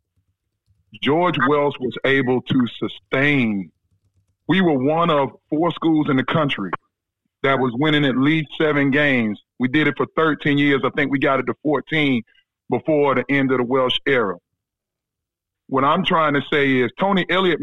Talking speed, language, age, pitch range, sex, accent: 170 wpm, English, 30-49, 105-165 Hz, male, American